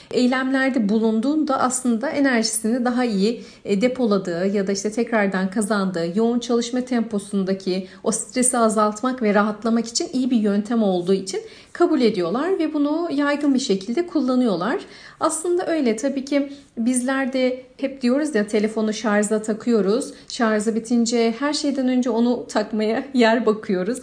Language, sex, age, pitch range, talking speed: Turkish, female, 40-59, 215-275 Hz, 135 wpm